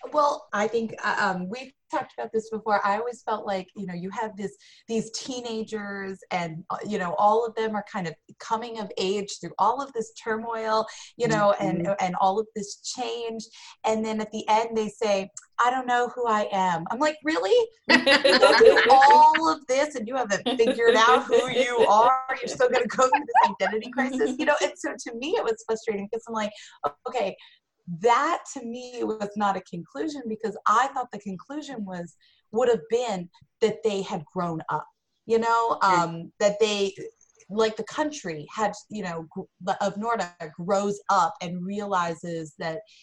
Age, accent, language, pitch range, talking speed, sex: 20-39, American, English, 180-235 Hz, 185 wpm, female